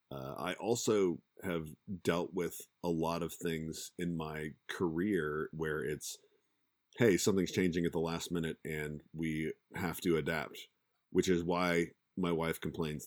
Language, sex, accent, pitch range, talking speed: English, male, American, 75-90 Hz, 150 wpm